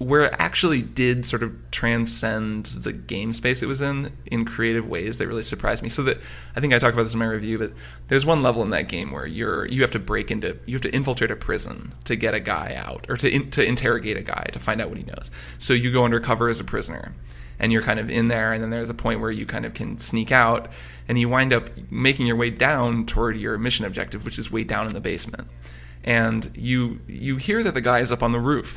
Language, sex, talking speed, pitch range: English, male, 260 wpm, 110-130 Hz